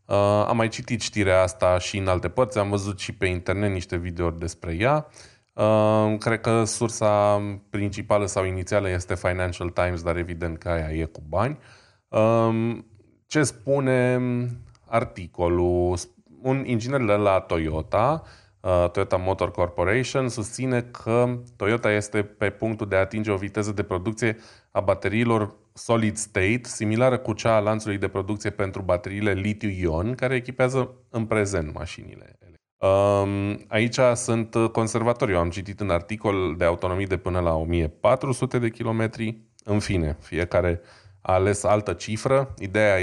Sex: male